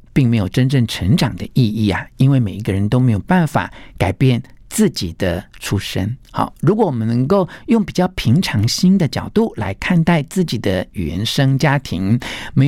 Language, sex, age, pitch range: Chinese, male, 50-69, 105-170 Hz